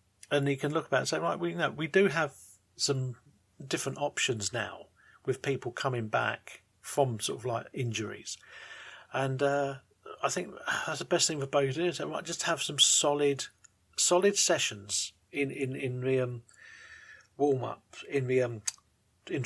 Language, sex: English, male